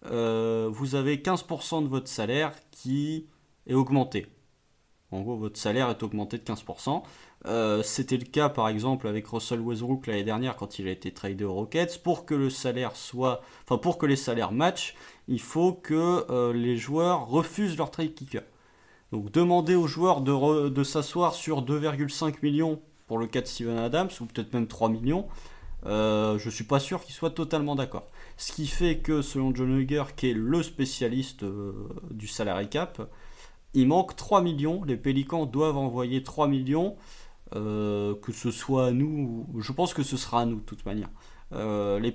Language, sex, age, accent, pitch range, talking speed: French, male, 30-49, French, 115-155 Hz, 190 wpm